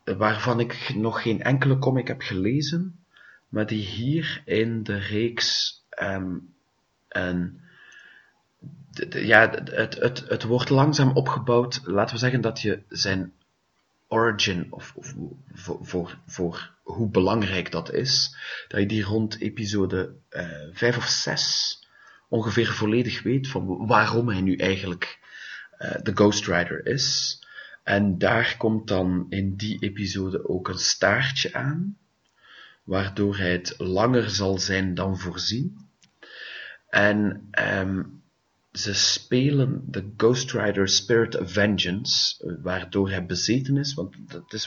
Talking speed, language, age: 135 wpm, English, 30-49